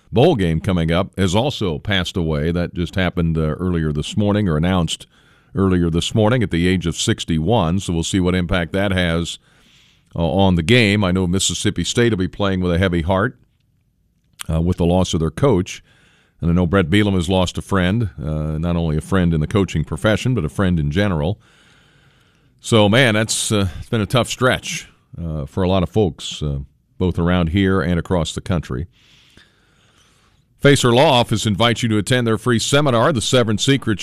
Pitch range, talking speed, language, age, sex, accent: 90-115 Hz, 200 wpm, English, 50-69, male, American